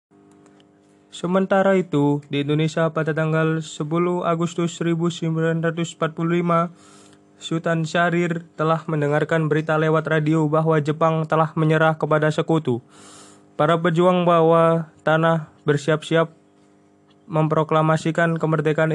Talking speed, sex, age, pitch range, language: 90 wpm, male, 20-39, 145-165 Hz, Indonesian